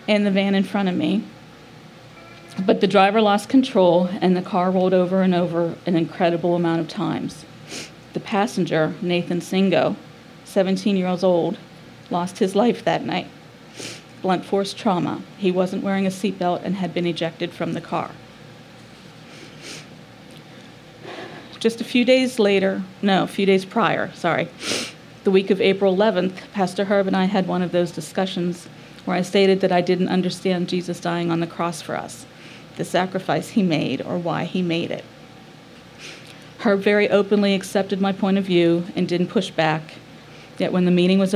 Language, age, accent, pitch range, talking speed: English, 40-59, American, 175-200 Hz, 170 wpm